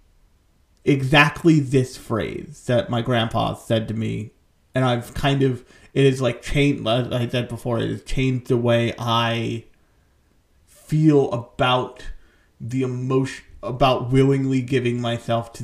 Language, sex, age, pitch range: English, male, 30-49, 115-135 Hz